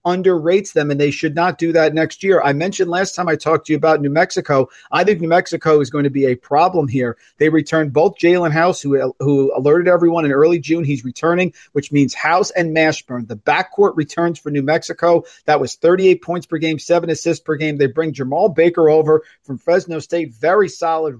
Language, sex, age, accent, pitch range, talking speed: English, male, 50-69, American, 150-175 Hz, 220 wpm